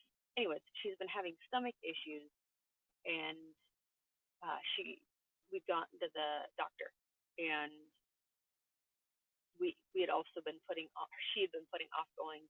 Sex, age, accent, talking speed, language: female, 30-49, American, 135 wpm, English